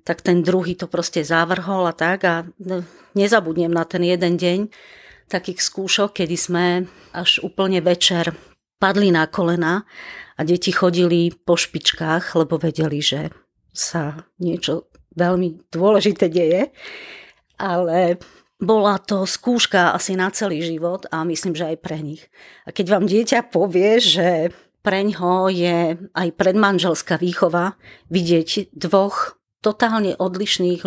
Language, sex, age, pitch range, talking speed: Slovak, female, 40-59, 165-190 Hz, 130 wpm